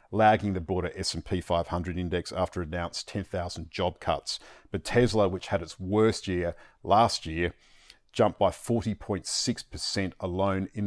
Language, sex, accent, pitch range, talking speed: English, male, Australian, 85-100 Hz, 140 wpm